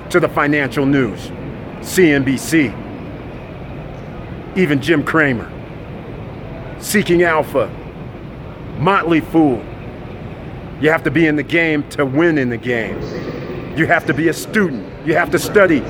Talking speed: 130 wpm